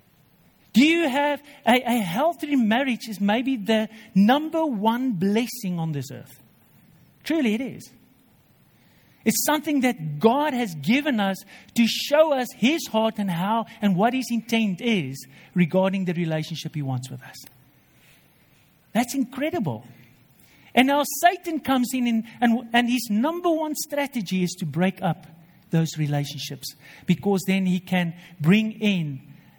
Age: 50-69